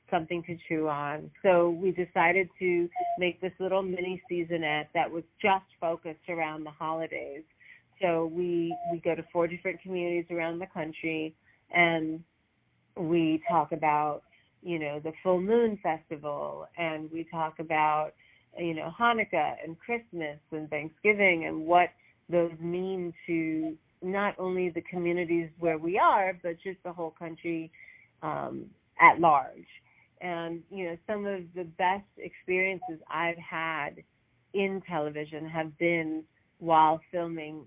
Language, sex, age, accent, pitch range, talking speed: English, female, 40-59, American, 160-180 Hz, 140 wpm